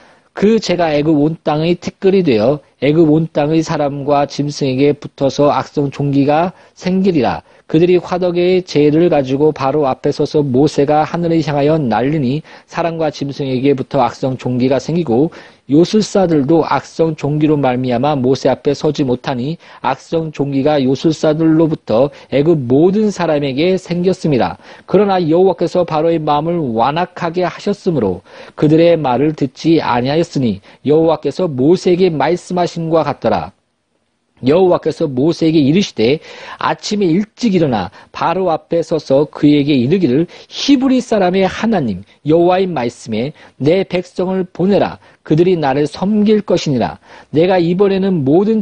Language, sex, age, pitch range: Korean, male, 40-59, 145-185 Hz